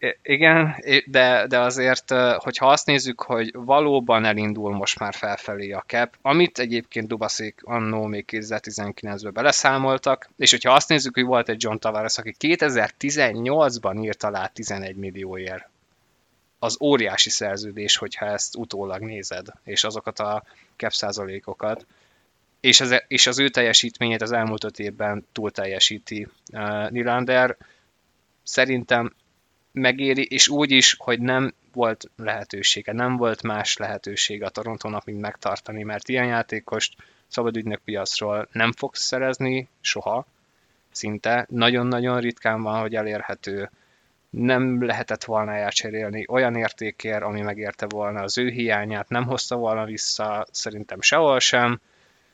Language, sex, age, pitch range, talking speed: Hungarian, male, 20-39, 105-125 Hz, 130 wpm